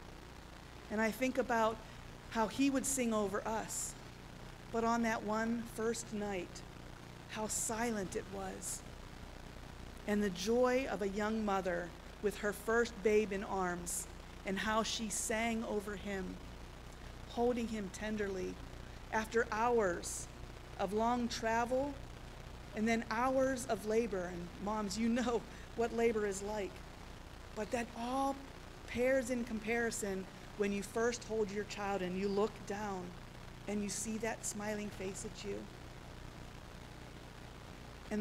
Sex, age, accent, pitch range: female, 40-59, American, 185-230 Hz